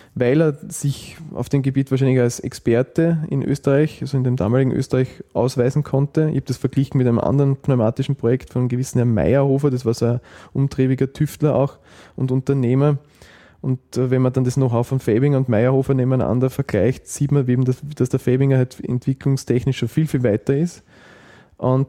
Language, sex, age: German, male, 20-39